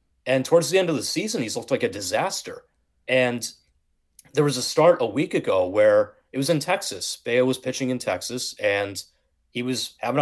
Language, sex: English, male